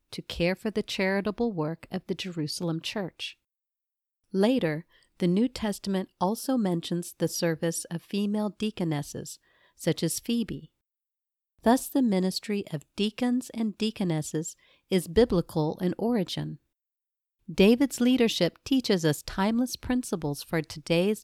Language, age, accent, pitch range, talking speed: English, 50-69, American, 165-215 Hz, 120 wpm